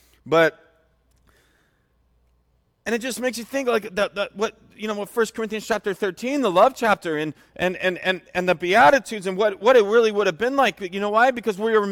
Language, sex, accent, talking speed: English, male, American, 215 wpm